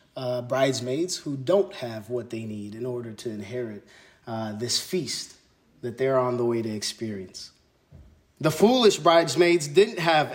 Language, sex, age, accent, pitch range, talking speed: English, male, 20-39, American, 135-185 Hz, 155 wpm